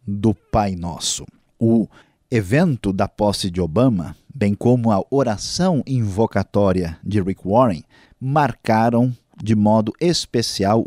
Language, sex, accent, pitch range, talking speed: Portuguese, male, Brazilian, 100-125 Hz, 115 wpm